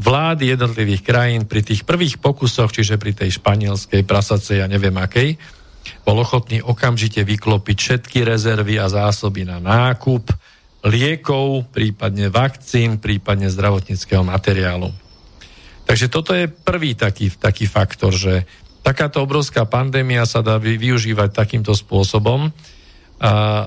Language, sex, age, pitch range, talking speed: Slovak, male, 50-69, 100-125 Hz, 125 wpm